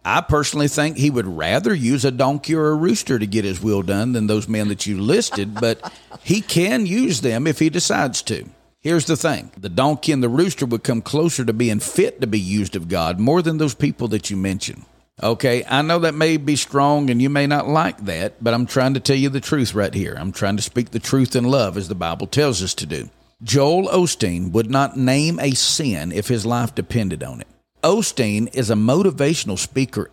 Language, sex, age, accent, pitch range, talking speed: English, male, 50-69, American, 105-150 Hz, 225 wpm